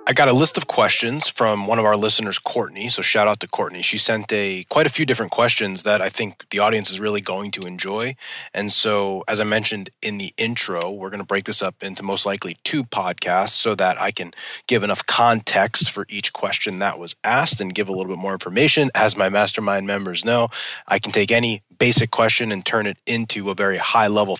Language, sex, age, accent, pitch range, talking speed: English, male, 20-39, American, 100-120 Hz, 225 wpm